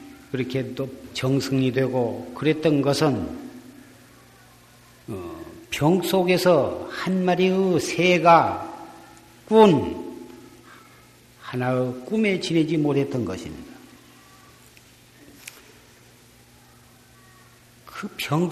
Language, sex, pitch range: Korean, male, 125-160 Hz